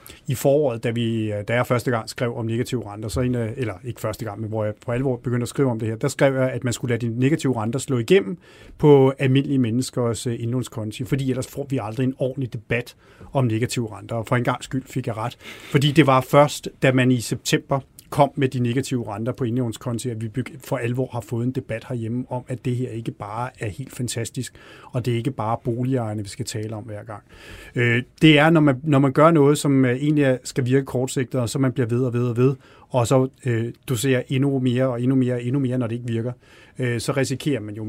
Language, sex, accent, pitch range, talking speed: Danish, male, native, 120-135 Hz, 235 wpm